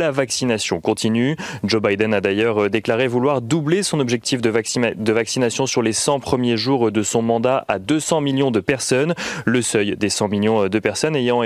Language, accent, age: French, French, 30-49